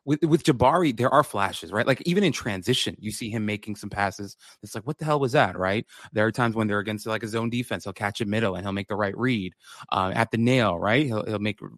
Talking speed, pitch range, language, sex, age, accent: 270 wpm, 105-130 Hz, English, male, 20-39, American